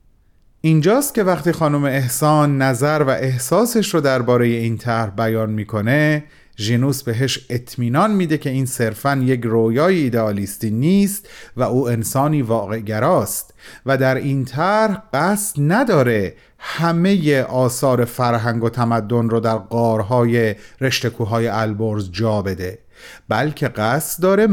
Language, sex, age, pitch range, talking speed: Persian, male, 30-49, 115-160 Hz, 130 wpm